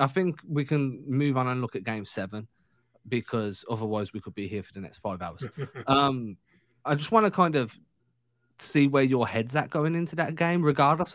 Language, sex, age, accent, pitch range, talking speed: English, male, 20-39, British, 110-140 Hz, 210 wpm